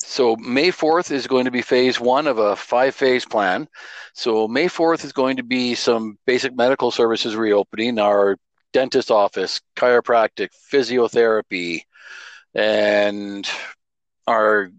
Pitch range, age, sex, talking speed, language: 110-130 Hz, 50-69, male, 130 wpm, English